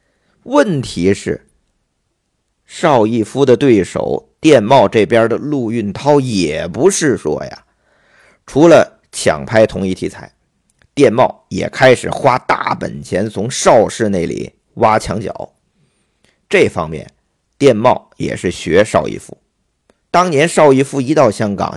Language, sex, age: Chinese, male, 50-69